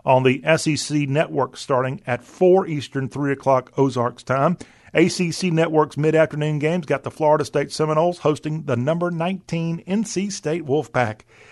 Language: English